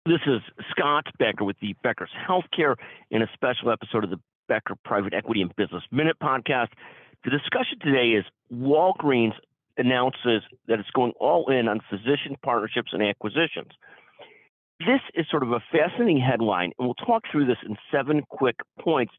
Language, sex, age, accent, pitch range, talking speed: English, male, 50-69, American, 115-150 Hz, 165 wpm